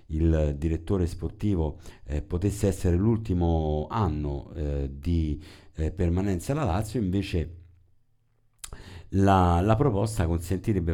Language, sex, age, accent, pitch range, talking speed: Italian, male, 50-69, native, 80-100 Hz, 105 wpm